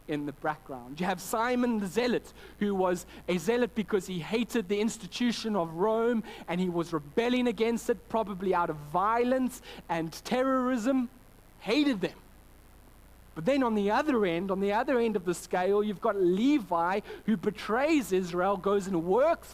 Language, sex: English, male